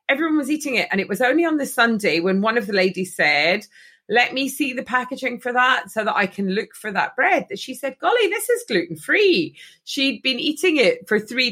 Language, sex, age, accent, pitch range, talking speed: English, female, 30-49, British, 180-230 Hz, 240 wpm